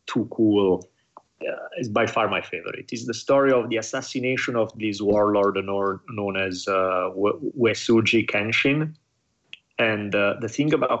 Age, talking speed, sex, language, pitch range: 30-49, 155 wpm, male, English, 105-125 Hz